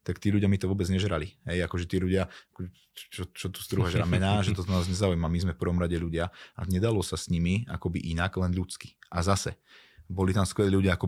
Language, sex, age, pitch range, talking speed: Slovak, male, 20-39, 85-100 Hz, 250 wpm